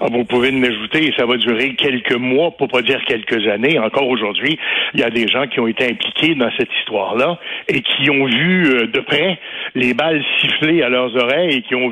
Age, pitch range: 60-79, 120-155 Hz